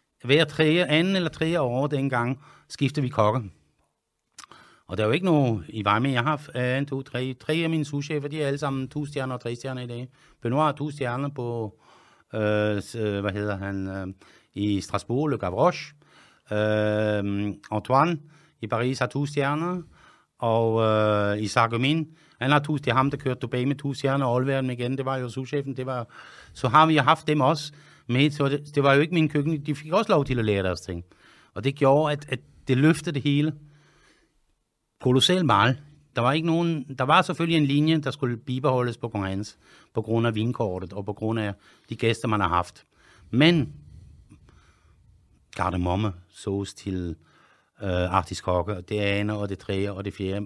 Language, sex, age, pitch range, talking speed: English, male, 60-79, 105-145 Hz, 185 wpm